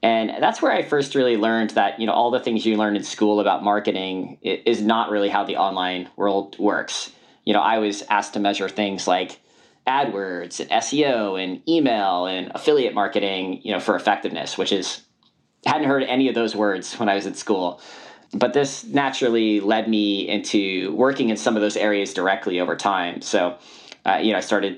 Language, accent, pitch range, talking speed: English, American, 100-115 Hz, 200 wpm